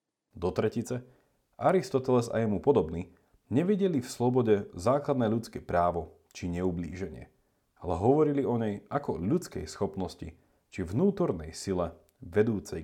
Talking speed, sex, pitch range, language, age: 115 wpm, male, 90-130 Hz, Slovak, 40-59